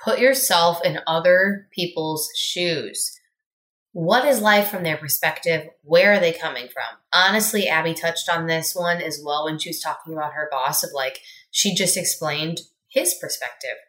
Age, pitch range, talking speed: 20-39, 150-200 Hz, 170 wpm